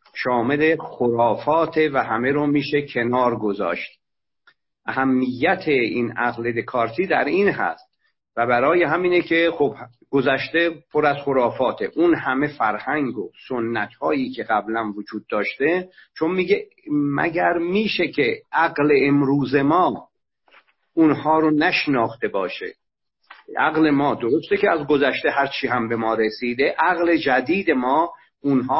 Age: 50-69